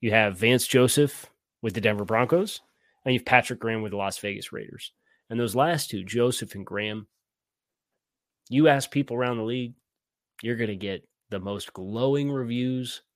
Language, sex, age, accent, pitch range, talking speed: English, male, 30-49, American, 105-130 Hz, 180 wpm